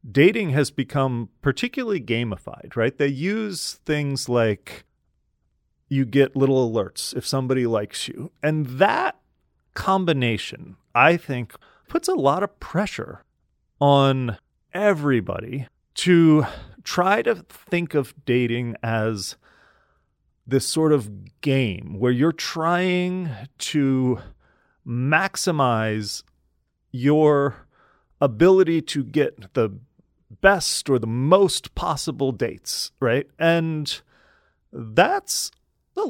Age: 30-49